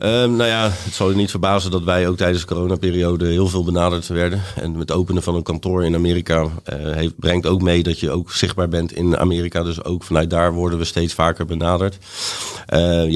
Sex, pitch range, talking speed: male, 80-95 Hz, 220 wpm